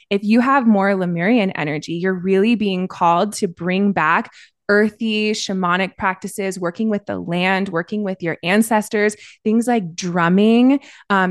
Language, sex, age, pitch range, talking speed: English, female, 20-39, 180-220 Hz, 150 wpm